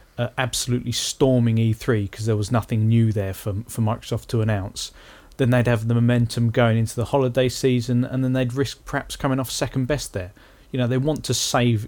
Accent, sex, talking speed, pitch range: British, male, 205 wpm, 115-130 Hz